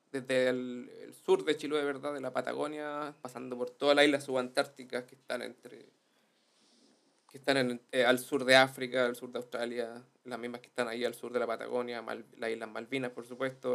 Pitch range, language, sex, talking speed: 125-155 Hz, Spanish, male, 205 wpm